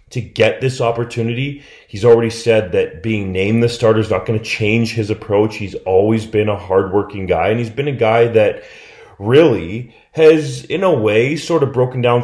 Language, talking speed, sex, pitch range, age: English, 195 wpm, male, 105-125 Hz, 30-49